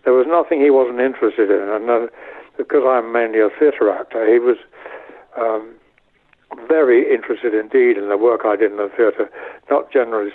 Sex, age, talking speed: male, 60-79, 180 wpm